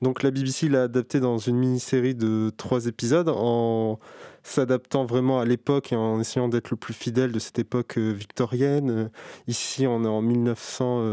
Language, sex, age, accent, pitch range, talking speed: French, male, 20-39, French, 120-140 Hz, 175 wpm